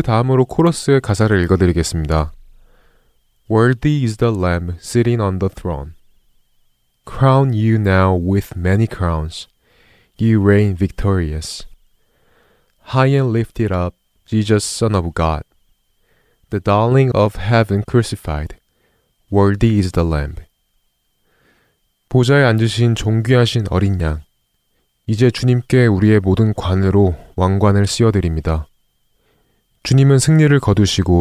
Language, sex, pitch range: Korean, male, 90-115 Hz